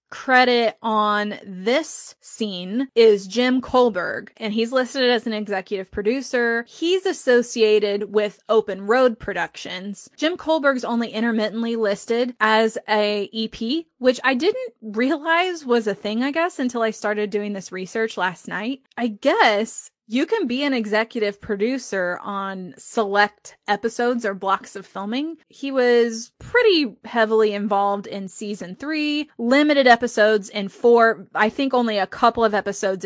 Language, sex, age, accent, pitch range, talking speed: English, female, 20-39, American, 200-240 Hz, 145 wpm